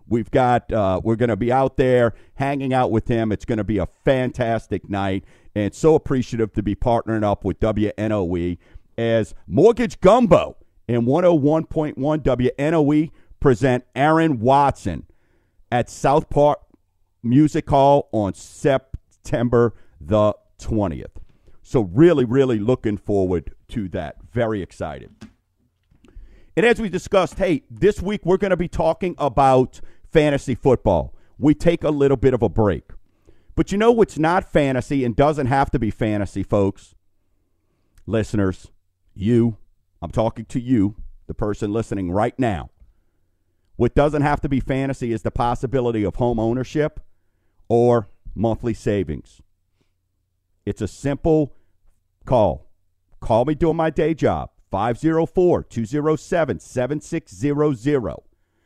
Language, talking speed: English, 135 wpm